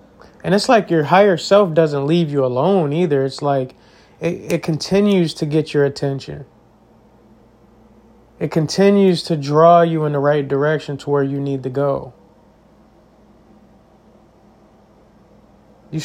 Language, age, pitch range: English, 30-49, 130-165 Hz